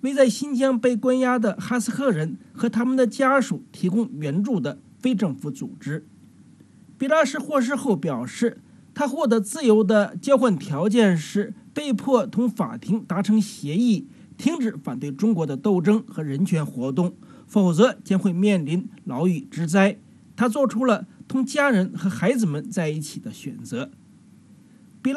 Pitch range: 190-250 Hz